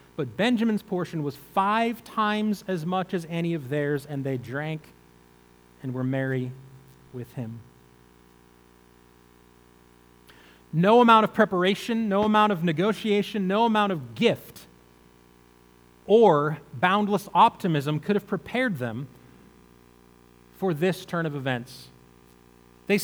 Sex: male